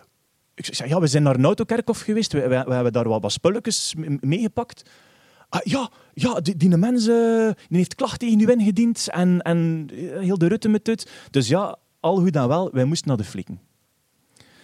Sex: male